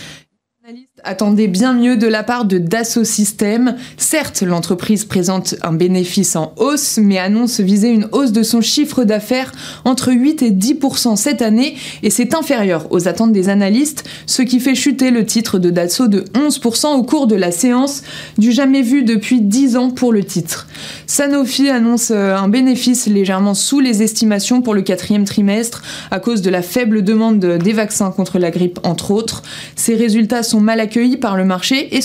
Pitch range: 200-250 Hz